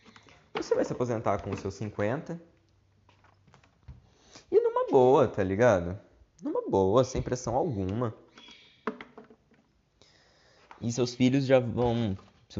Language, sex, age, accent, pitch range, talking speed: Portuguese, male, 20-39, Brazilian, 90-115 Hz, 115 wpm